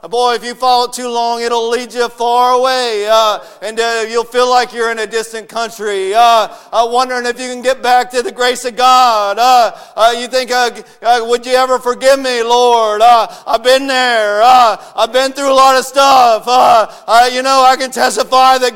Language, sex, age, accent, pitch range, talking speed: English, male, 50-69, American, 190-255 Hz, 220 wpm